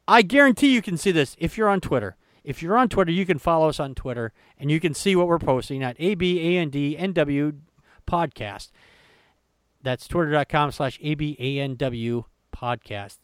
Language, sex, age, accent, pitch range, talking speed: English, male, 40-59, American, 125-185 Hz, 160 wpm